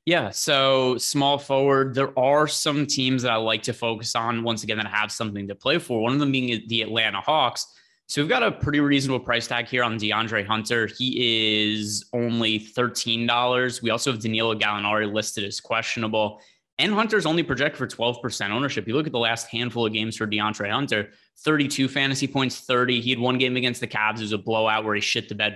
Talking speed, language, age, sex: 210 wpm, English, 20-39, male